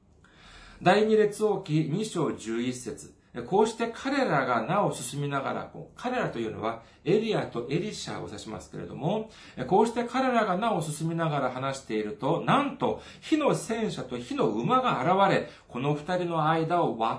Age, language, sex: 40-59, Japanese, male